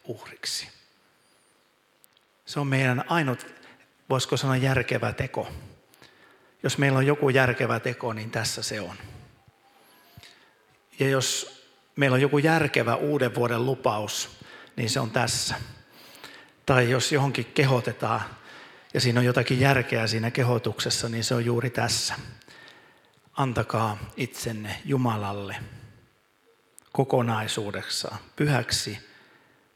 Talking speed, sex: 105 wpm, male